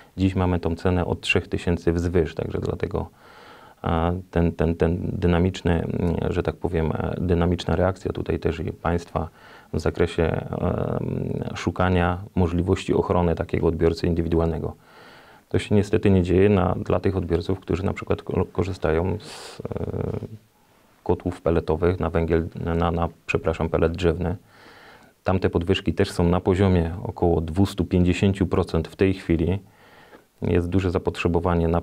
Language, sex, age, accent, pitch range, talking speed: Polish, male, 30-49, native, 85-100 Hz, 130 wpm